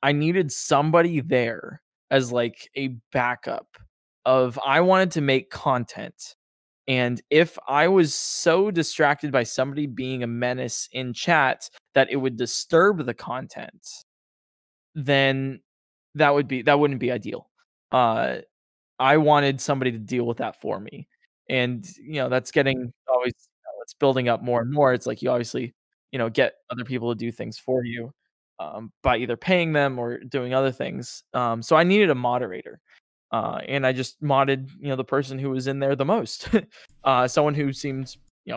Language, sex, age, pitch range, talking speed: English, male, 20-39, 125-140 Hz, 175 wpm